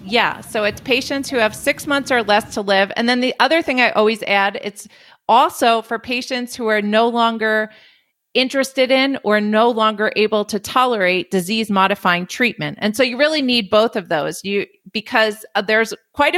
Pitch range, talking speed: 190-230 Hz, 190 wpm